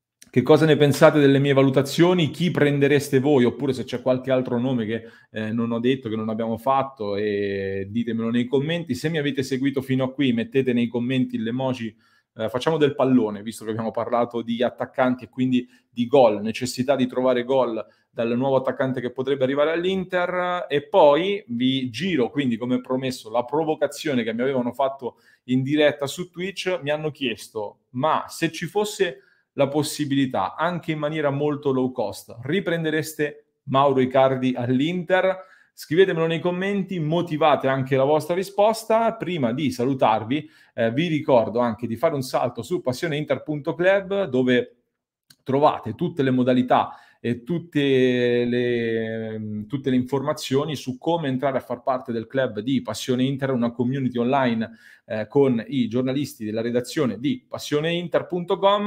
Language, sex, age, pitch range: Italian, male, 30-49, 120-155 Hz